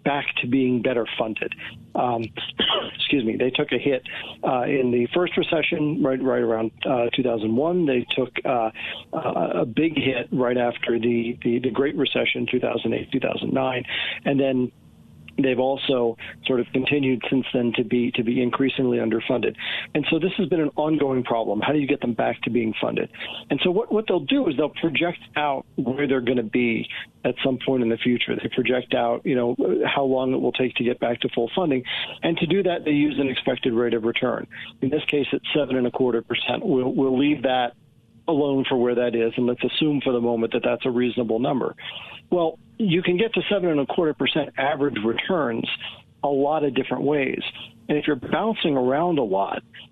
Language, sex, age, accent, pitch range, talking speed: English, male, 40-59, American, 120-145 Hz, 205 wpm